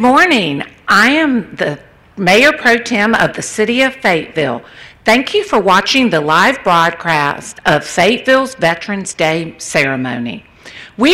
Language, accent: English, American